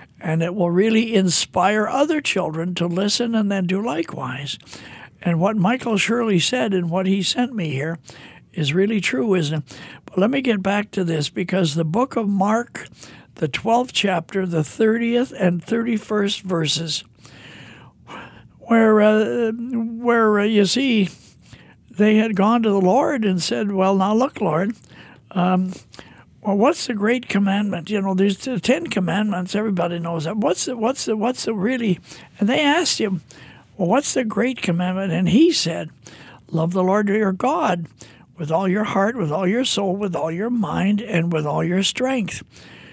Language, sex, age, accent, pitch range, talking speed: English, male, 60-79, American, 170-225 Hz, 170 wpm